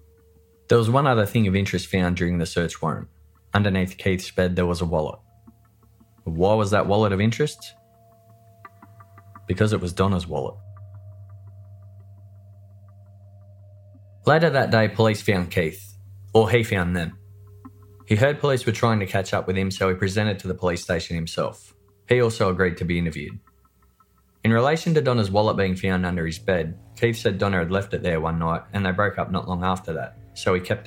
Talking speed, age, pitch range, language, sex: 185 wpm, 20-39, 90-110 Hz, English, male